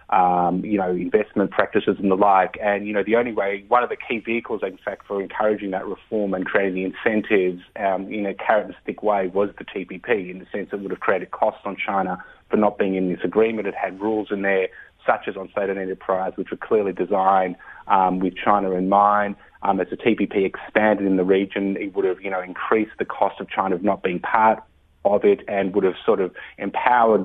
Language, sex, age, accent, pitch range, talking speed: English, male, 30-49, Australian, 95-110 Hz, 225 wpm